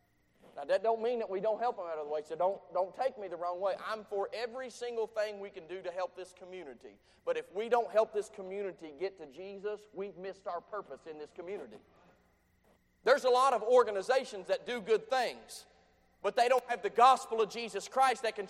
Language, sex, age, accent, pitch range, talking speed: English, male, 40-59, American, 205-310 Hz, 225 wpm